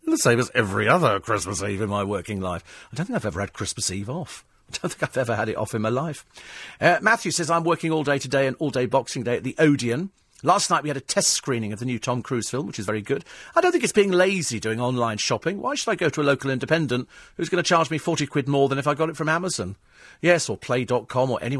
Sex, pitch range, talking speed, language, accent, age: male, 115-160 Hz, 280 wpm, English, British, 40-59